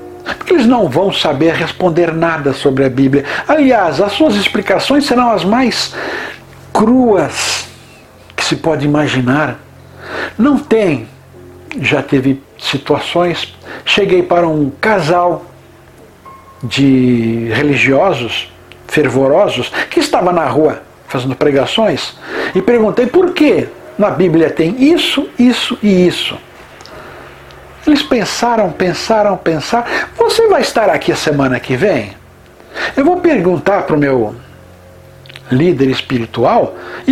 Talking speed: 115 wpm